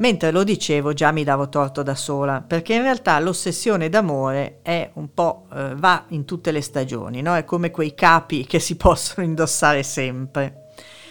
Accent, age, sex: native, 50-69, female